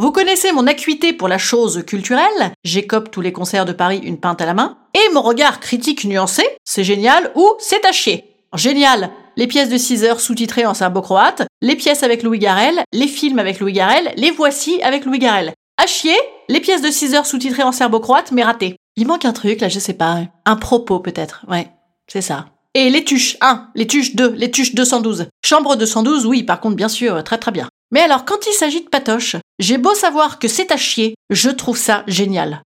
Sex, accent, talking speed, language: female, French, 215 wpm, French